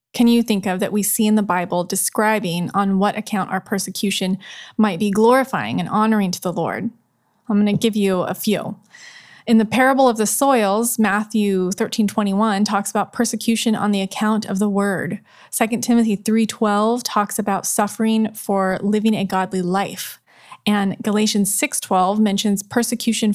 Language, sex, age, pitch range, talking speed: English, female, 20-39, 200-230 Hz, 165 wpm